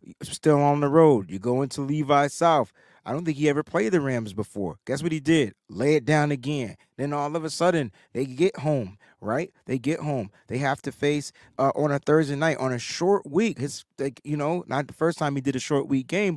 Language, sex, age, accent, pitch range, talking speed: English, male, 30-49, American, 140-185 Hz, 240 wpm